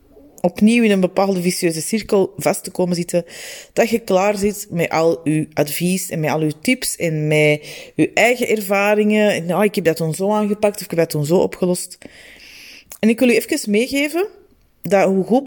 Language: Dutch